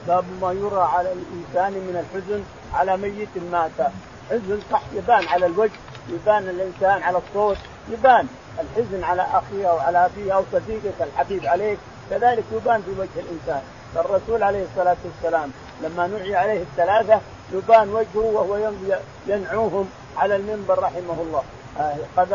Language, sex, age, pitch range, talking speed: Arabic, male, 50-69, 180-220 Hz, 135 wpm